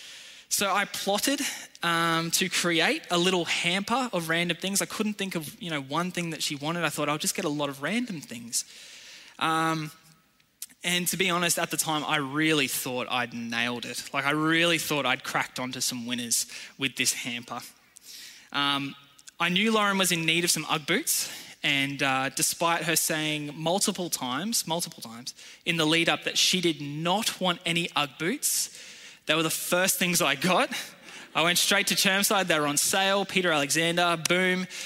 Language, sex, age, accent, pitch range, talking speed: English, male, 10-29, Australian, 155-195 Hz, 185 wpm